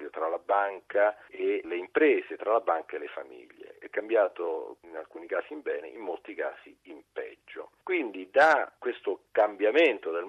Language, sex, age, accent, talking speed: Italian, male, 50-69, native, 170 wpm